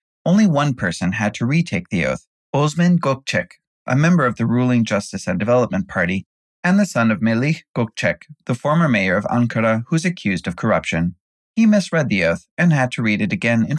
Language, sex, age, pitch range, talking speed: English, male, 30-49, 110-160 Hz, 195 wpm